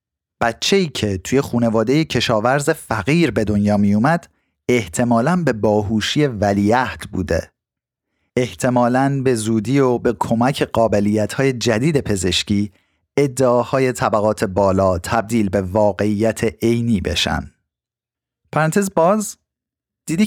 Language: Persian